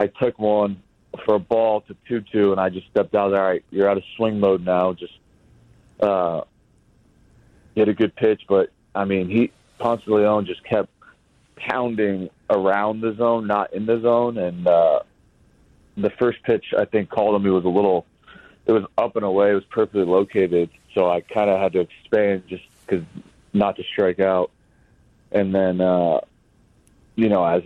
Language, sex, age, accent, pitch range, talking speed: English, male, 30-49, American, 95-110 Hz, 190 wpm